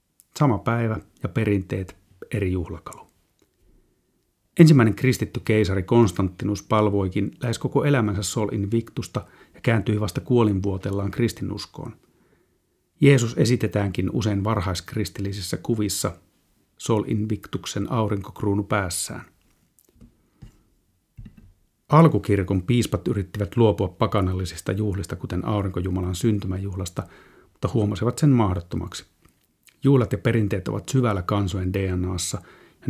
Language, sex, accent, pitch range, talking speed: Finnish, male, native, 95-115 Hz, 95 wpm